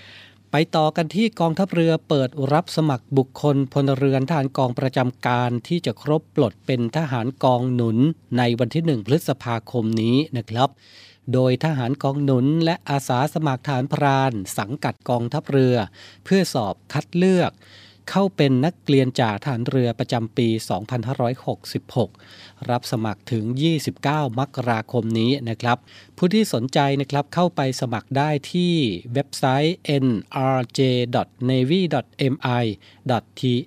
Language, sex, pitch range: Thai, male, 115-145 Hz